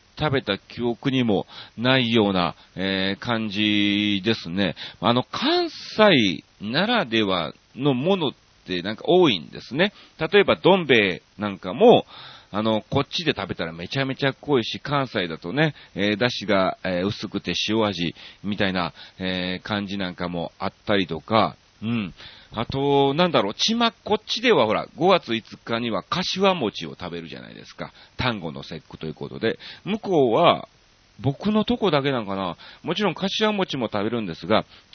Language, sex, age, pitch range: Japanese, male, 40-59, 100-150 Hz